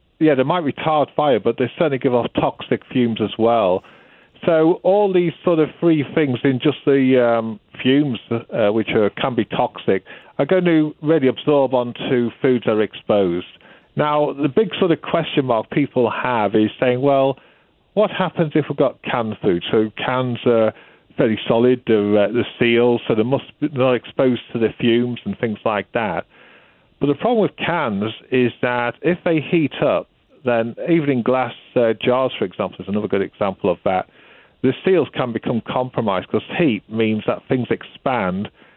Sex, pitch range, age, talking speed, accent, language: male, 115-150 Hz, 50-69, 180 wpm, British, English